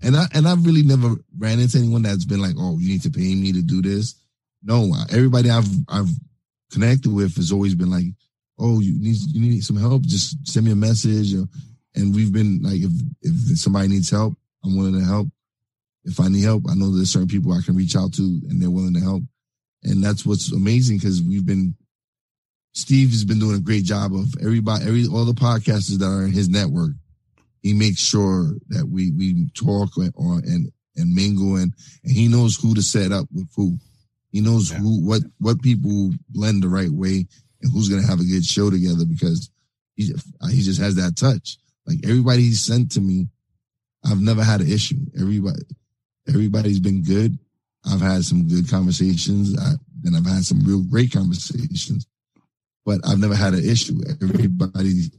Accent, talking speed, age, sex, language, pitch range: American, 195 wpm, 20-39, male, English, 100-135 Hz